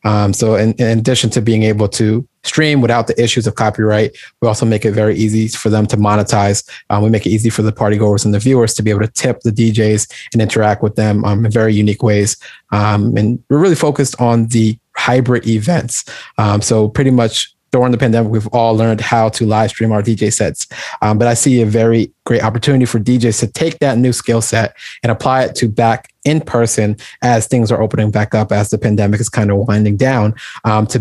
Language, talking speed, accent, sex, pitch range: English, 225 wpm, American, male, 110-125 Hz